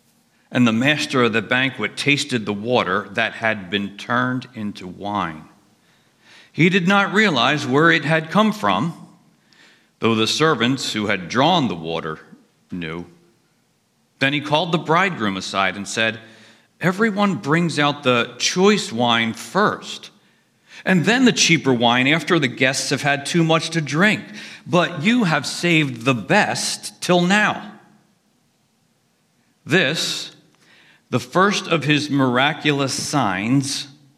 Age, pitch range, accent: 50-69, 115-165 Hz, American